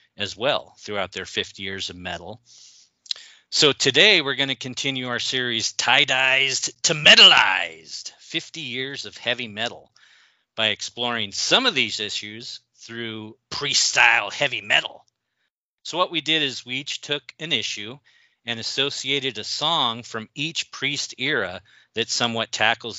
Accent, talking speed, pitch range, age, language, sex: American, 145 wpm, 100-125 Hz, 40-59, English, male